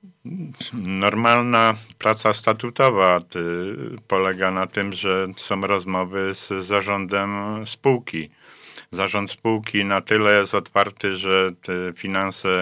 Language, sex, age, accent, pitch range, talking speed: Polish, male, 50-69, native, 95-105 Hz, 100 wpm